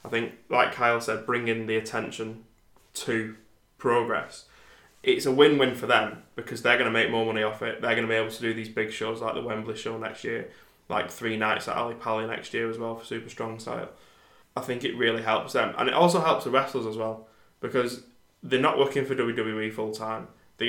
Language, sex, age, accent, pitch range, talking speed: English, male, 20-39, British, 110-120 Hz, 220 wpm